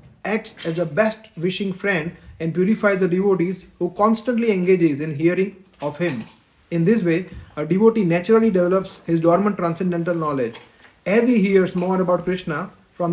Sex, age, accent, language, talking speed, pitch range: male, 30-49, Indian, Czech, 155 wpm, 165-200 Hz